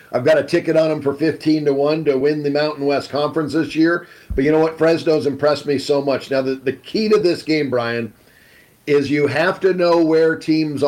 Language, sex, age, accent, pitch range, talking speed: English, male, 50-69, American, 140-160 Hz, 230 wpm